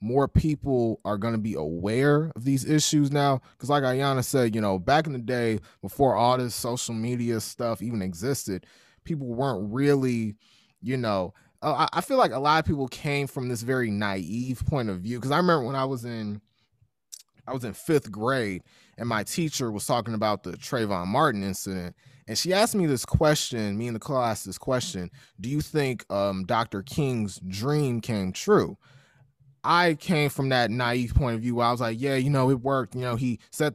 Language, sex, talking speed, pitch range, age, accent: English, male, 200 wpm, 110-145 Hz, 20-39, American